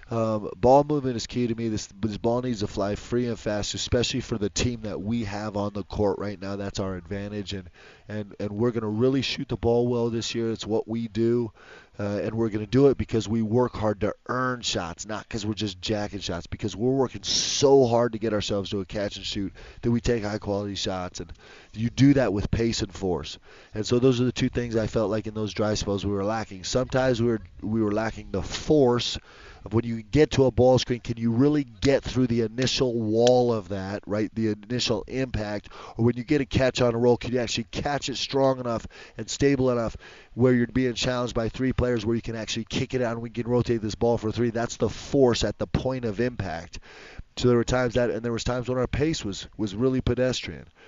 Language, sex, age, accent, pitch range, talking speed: English, male, 30-49, American, 105-125 Hz, 240 wpm